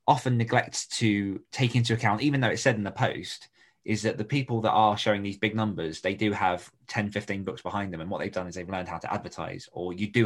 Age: 20-39